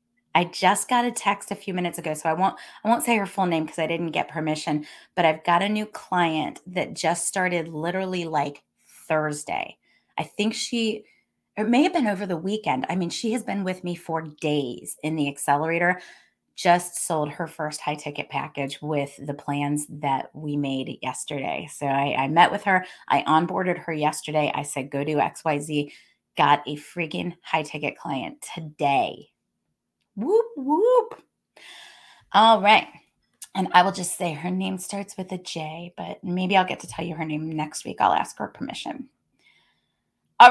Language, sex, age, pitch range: English, female, 30-49, 155-210 Hz